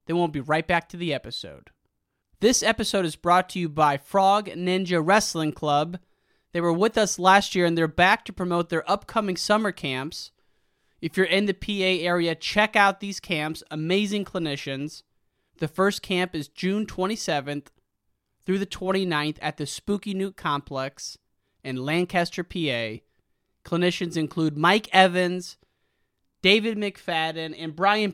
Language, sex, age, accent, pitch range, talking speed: English, male, 30-49, American, 150-195 Hz, 150 wpm